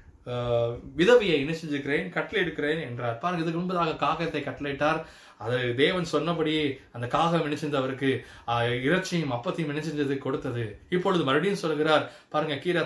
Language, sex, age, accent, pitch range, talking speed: Tamil, male, 20-39, native, 135-170 Hz, 115 wpm